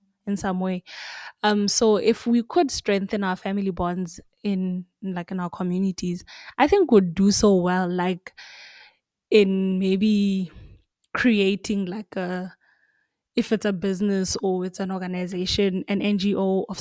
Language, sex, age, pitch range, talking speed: English, female, 20-39, 185-210 Hz, 145 wpm